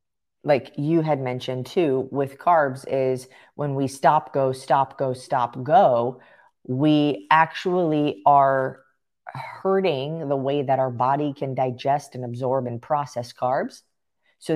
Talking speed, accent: 135 wpm, American